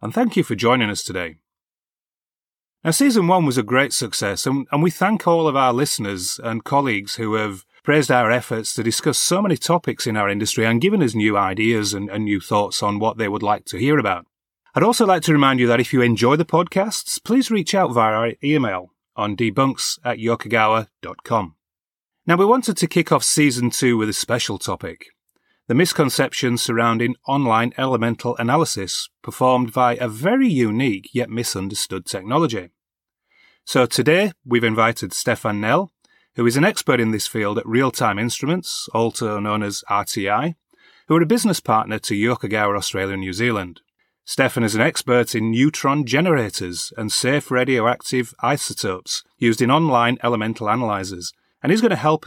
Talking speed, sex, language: 175 wpm, male, English